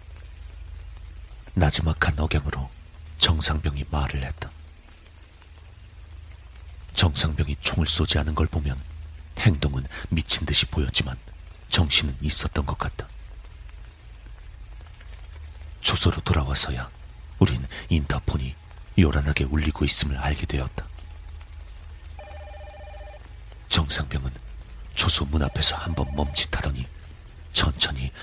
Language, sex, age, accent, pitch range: Korean, male, 40-59, native, 75-85 Hz